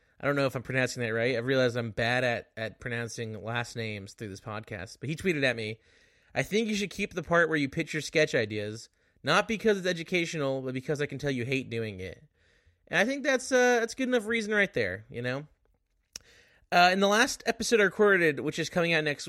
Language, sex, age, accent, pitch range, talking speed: English, male, 30-49, American, 120-165 Hz, 235 wpm